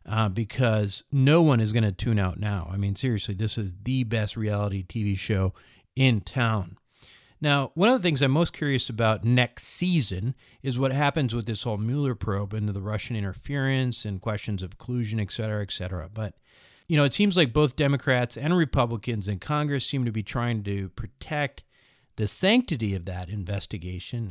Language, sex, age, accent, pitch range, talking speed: English, male, 40-59, American, 110-145 Hz, 190 wpm